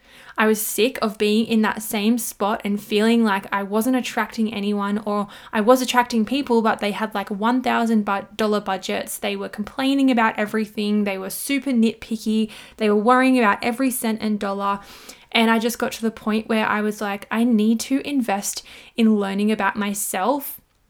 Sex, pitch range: female, 210-240 Hz